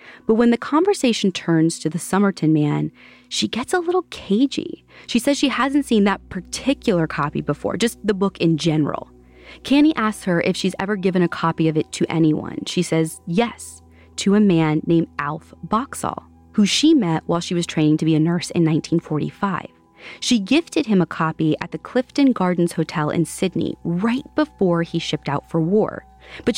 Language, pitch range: English, 160-240 Hz